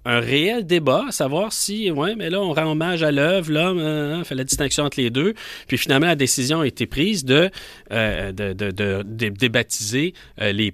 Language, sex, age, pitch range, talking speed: French, male, 40-59, 115-160 Hz, 220 wpm